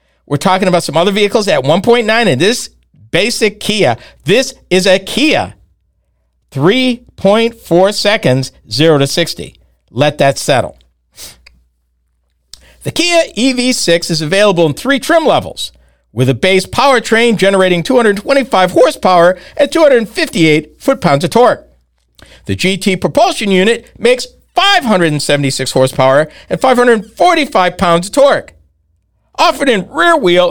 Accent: American